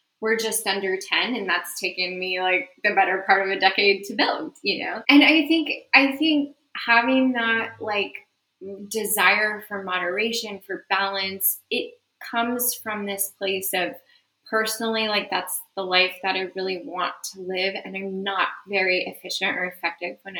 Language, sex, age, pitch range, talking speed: English, female, 10-29, 185-230 Hz, 170 wpm